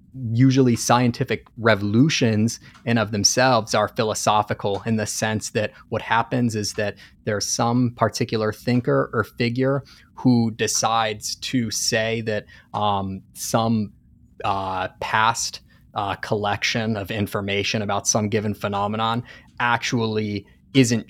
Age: 30-49